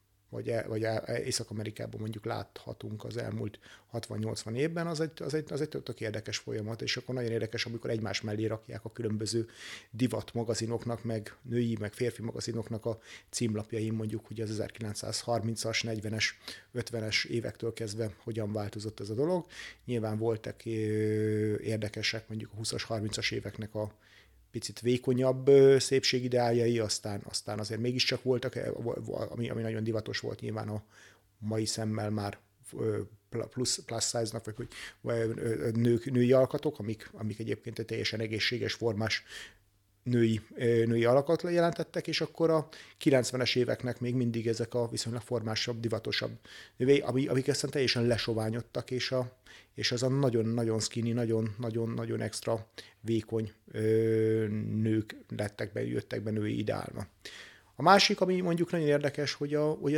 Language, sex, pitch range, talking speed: Hungarian, male, 110-125 Hz, 140 wpm